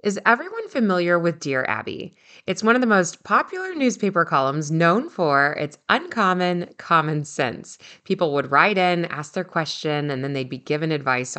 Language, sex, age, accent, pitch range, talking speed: English, female, 30-49, American, 150-210 Hz, 175 wpm